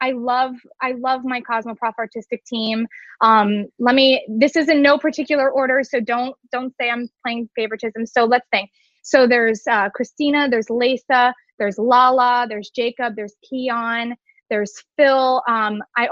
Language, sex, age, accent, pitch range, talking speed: English, female, 20-39, American, 225-275 Hz, 160 wpm